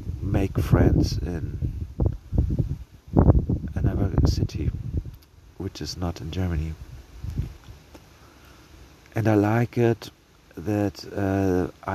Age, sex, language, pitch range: 50-69, male, German, 85-100 Hz